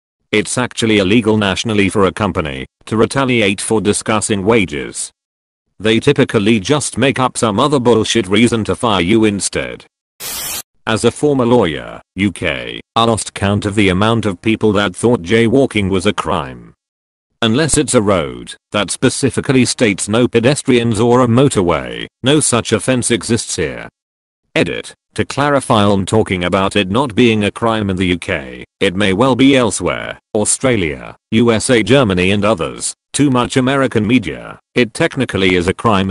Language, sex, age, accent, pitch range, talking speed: English, male, 40-59, British, 100-125 Hz, 155 wpm